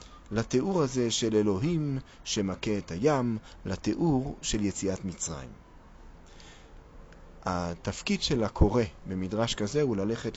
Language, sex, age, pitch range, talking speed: Hebrew, male, 40-59, 90-125 Hz, 105 wpm